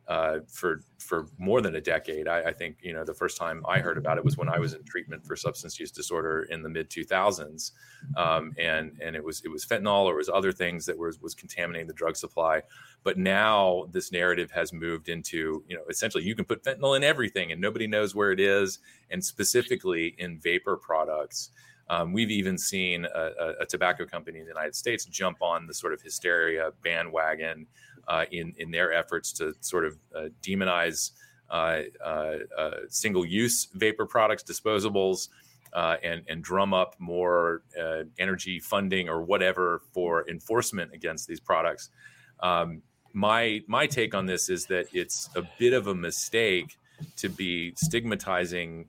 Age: 30-49